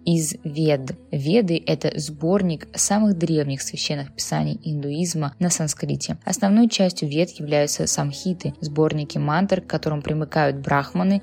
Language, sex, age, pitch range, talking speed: Russian, female, 20-39, 150-180 Hz, 135 wpm